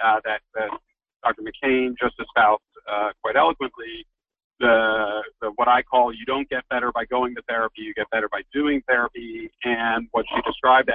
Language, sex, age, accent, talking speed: English, male, 50-69, American, 180 wpm